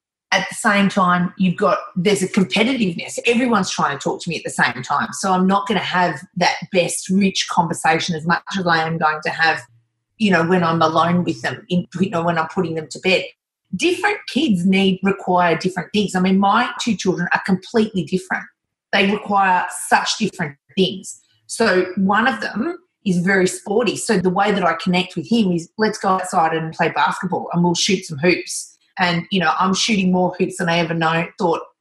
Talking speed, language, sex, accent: 210 wpm, English, female, Australian